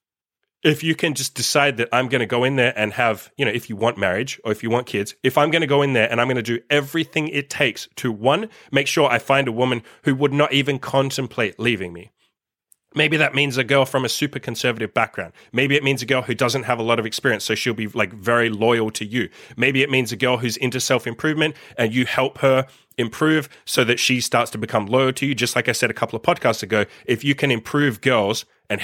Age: 30-49